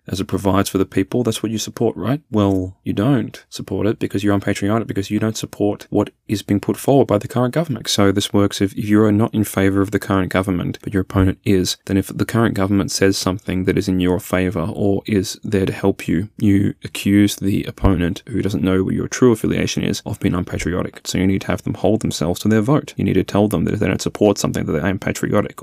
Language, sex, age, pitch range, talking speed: English, male, 20-39, 95-105 Hz, 255 wpm